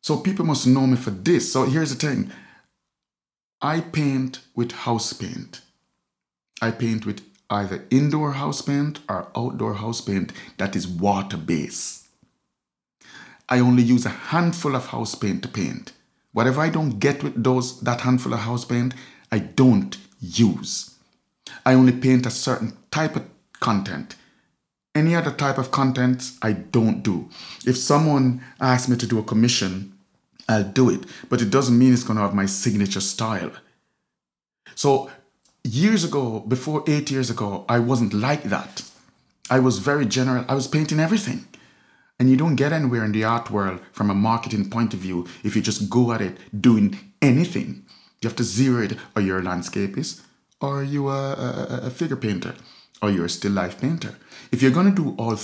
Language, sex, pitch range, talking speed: English, male, 105-135 Hz, 175 wpm